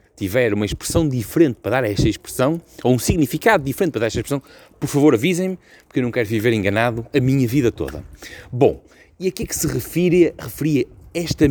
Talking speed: 215 wpm